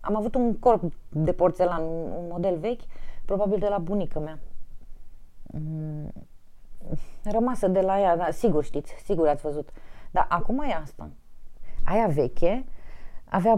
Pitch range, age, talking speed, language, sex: 150-215 Hz, 30-49, 135 wpm, Romanian, female